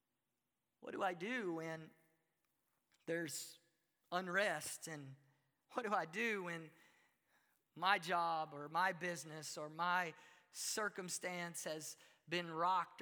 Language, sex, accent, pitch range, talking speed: English, male, American, 175-290 Hz, 110 wpm